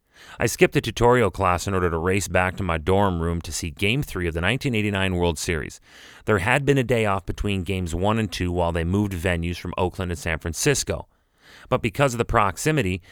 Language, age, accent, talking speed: English, 30-49, American, 220 wpm